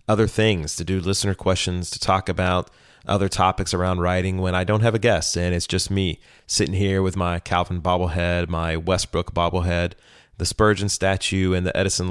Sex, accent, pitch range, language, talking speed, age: male, American, 85-105 Hz, English, 190 wpm, 30-49